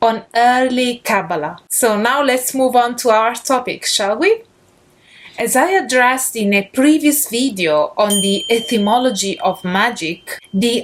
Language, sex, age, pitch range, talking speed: English, female, 30-49, 210-275 Hz, 145 wpm